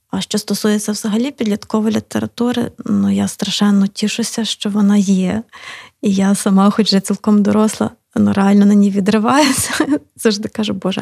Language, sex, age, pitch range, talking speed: Ukrainian, female, 20-39, 205-230 Hz, 150 wpm